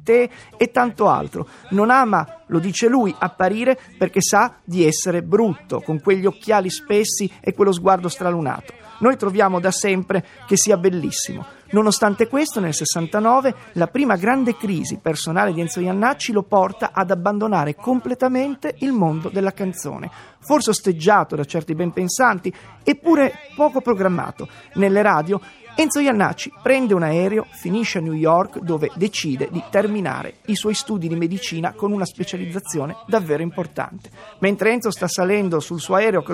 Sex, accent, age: male, native, 30-49